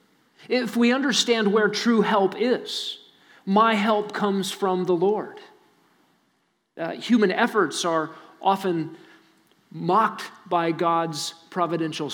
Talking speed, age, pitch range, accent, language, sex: 110 wpm, 40-59, 165-215 Hz, American, English, male